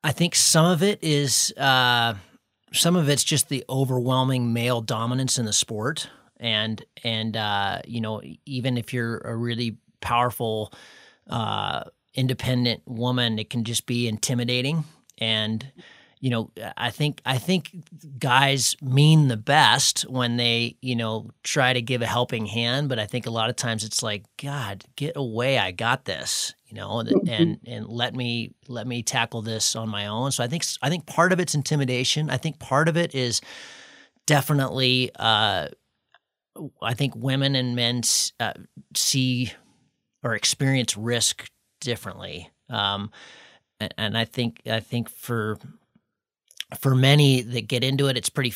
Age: 30-49